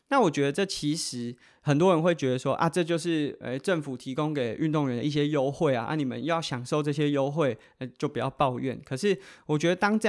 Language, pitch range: Chinese, 135-175 Hz